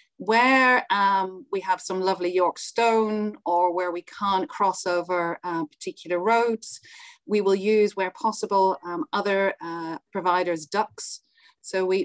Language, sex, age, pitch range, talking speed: English, female, 40-59, 175-205 Hz, 145 wpm